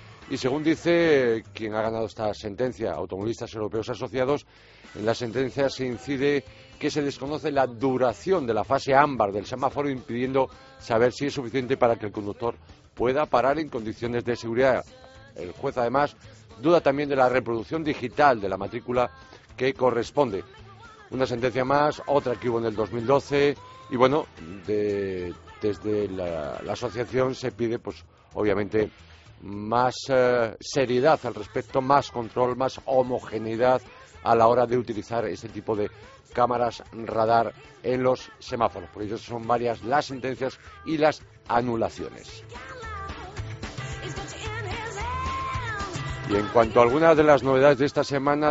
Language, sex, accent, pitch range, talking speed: Spanish, male, Spanish, 110-135 Hz, 145 wpm